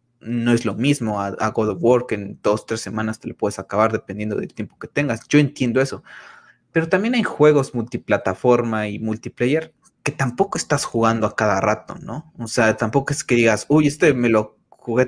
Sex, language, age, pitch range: male, Spanish, 20-39, 110-130 Hz